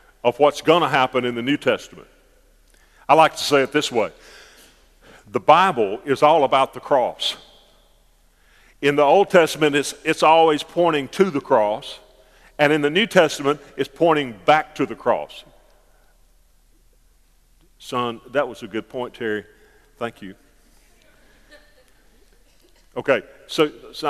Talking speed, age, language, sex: 140 wpm, 50-69, English, male